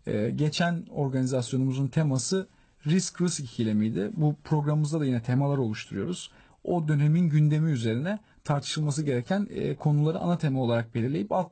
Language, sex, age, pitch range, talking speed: Turkish, male, 40-59, 130-160 Hz, 135 wpm